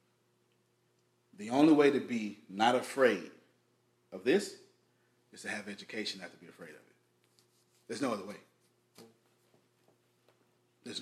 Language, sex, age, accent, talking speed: English, male, 30-49, American, 130 wpm